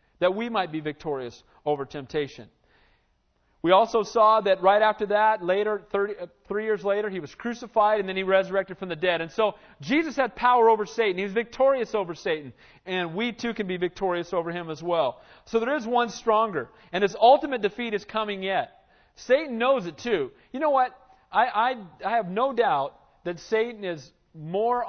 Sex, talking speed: male, 195 wpm